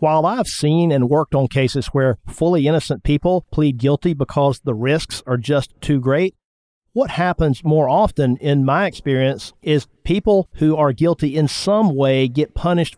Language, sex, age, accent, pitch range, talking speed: English, male, 50-69, American, 135-160 Hz, 170 wpm